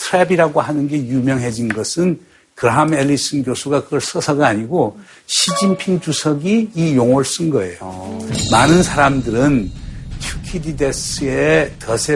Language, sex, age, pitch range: Korean, male, 60-79, 115-155 Hz